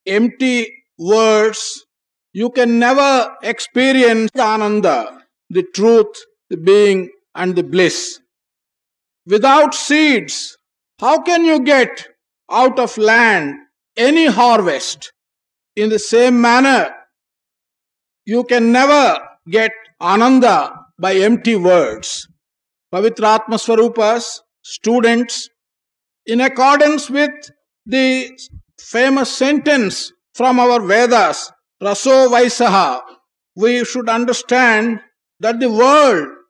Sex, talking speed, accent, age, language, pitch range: male, 95 wpm, Indian, 50-69, English, 220-270 Hz